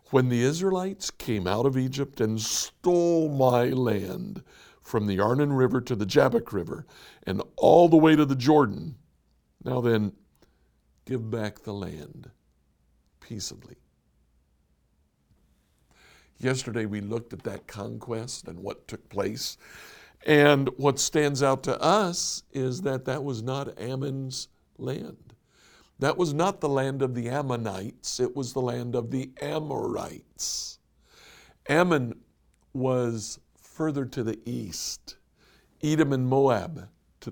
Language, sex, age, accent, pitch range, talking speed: English, male, 60-79, American, 105-140 Hz, 130 wpm